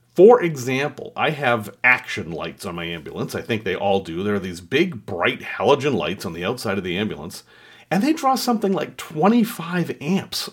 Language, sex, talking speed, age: English, male, 195 wpm, 40-59